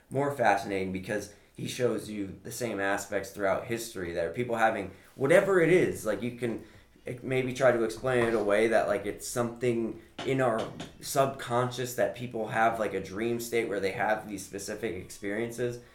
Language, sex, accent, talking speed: English, male, American, 180 wpm